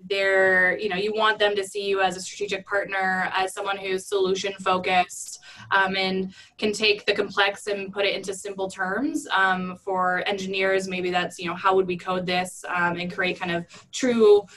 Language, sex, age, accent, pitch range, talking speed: English, female, 20-39, American, 180-205 Hz, 200 wpm